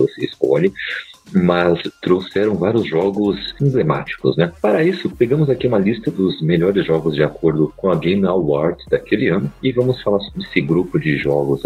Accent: Brazilian